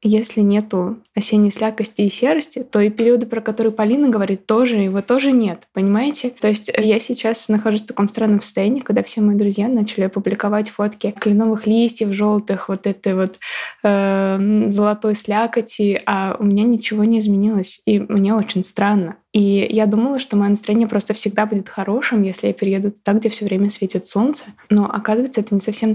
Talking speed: 180 wpm